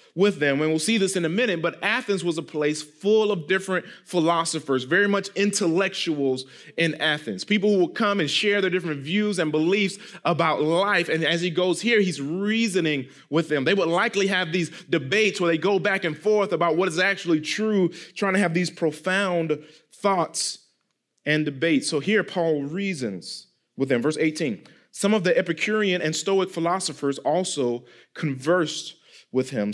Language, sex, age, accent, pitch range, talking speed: English, male, 30-49, American, 150-190 Hz, 180 wpm